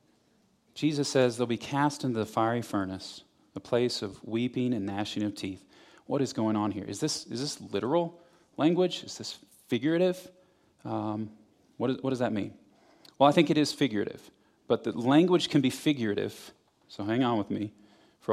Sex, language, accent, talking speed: male, English, American, 185 wpm